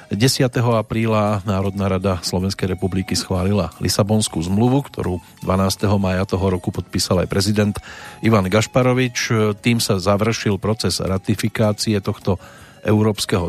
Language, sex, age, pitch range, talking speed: Slovak, male, 40-59, 95-115 Hz, 115 wpm